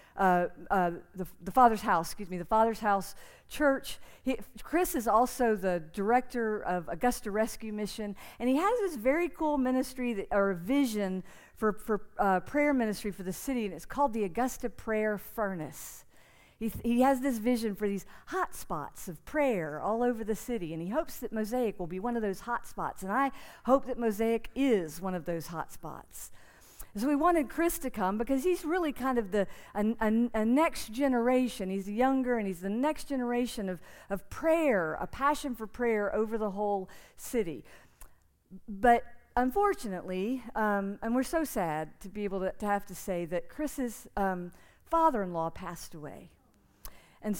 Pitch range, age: 195-255 Hz, 50-69